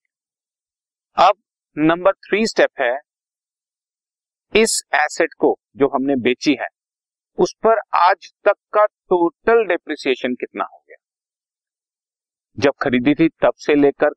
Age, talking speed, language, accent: 40-59, 120 wpm, Hindi, native